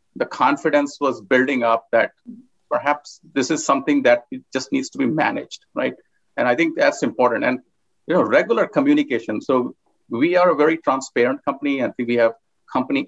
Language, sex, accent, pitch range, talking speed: English, male, Indian, 120-180 Hz, 185 wpm